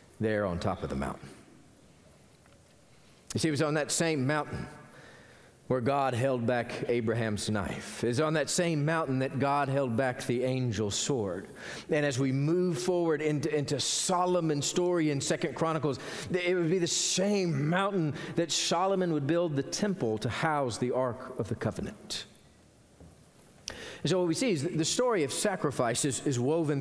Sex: male